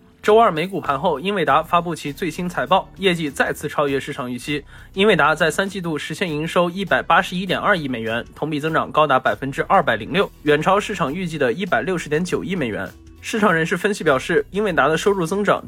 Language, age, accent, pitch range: Chinese, 20-39, native, 145-190 Hz